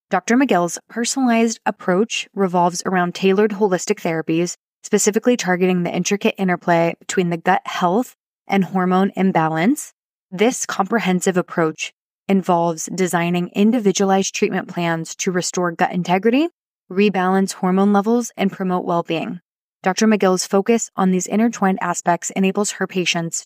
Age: 20-39